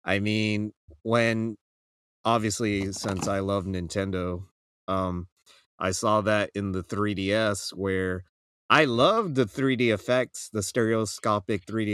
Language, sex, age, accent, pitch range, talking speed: English, male, 30-49, American, 90-115 Hz, 120 wpm